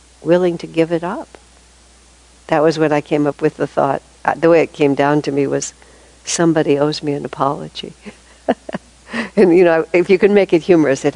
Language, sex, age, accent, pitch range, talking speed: English, female, 60-79, American, 125-165 Hz, 200 wpm